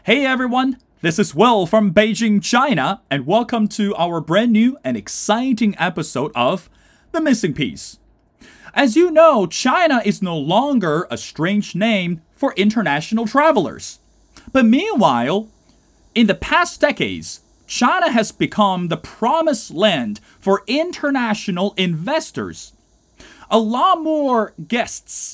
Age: 30-49